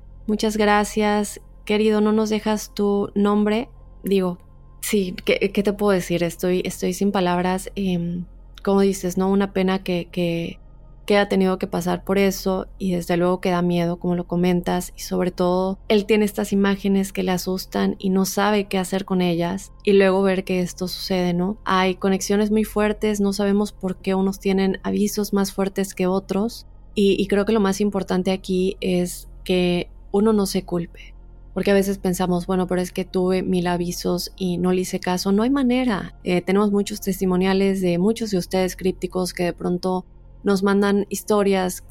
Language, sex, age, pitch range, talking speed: Spanish, female, 20-39, 180-205 Hz, 185 wpm